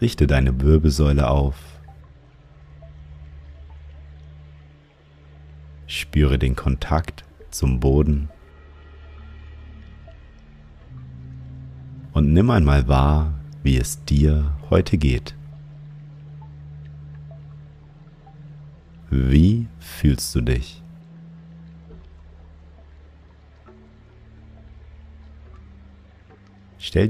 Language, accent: German, German